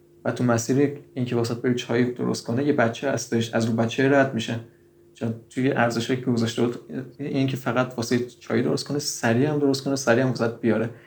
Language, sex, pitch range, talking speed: Persian, male, 115-125 Hz, 205 wpm